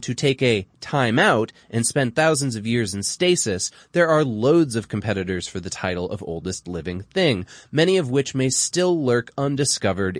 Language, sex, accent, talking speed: English, male, American, 185 wpm